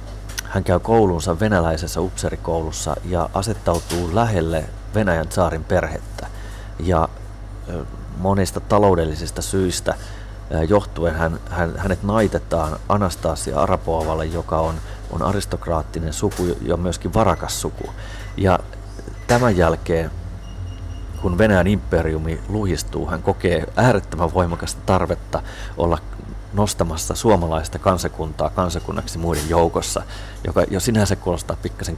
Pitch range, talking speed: 85-100 Hz, 105 wpm